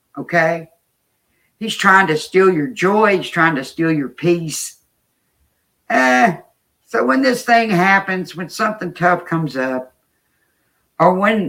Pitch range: 130-180 Hz